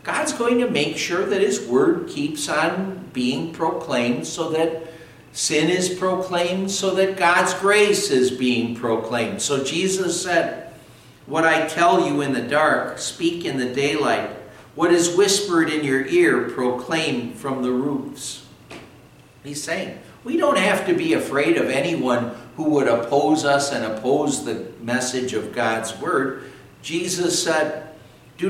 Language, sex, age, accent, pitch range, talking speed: English, male, 60-79, American, 120-180 Hz, 150 wpm